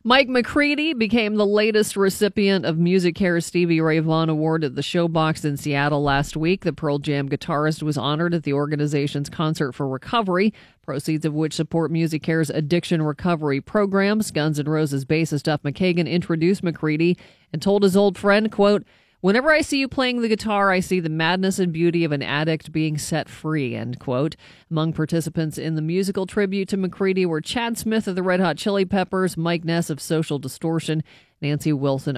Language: English